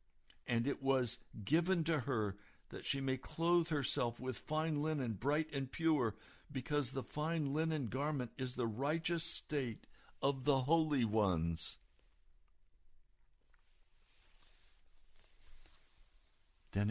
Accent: American